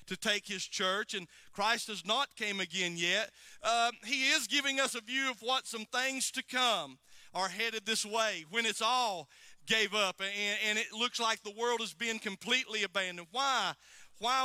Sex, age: male, 40-59